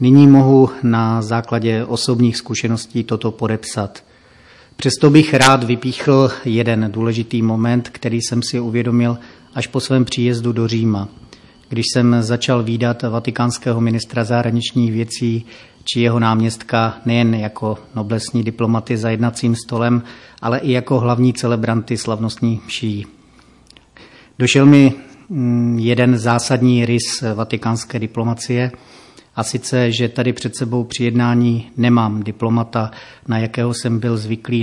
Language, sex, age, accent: Czech, male, 40-59, native